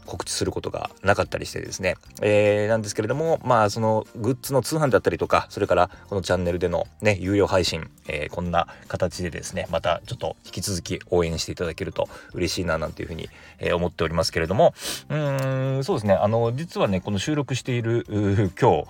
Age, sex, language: 30-49, male, Japanese